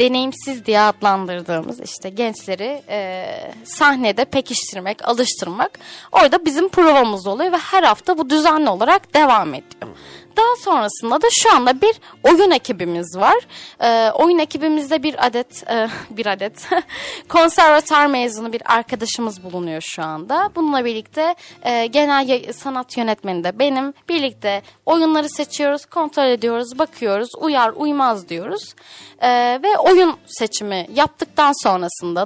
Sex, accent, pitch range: female, native, 220-320 Hz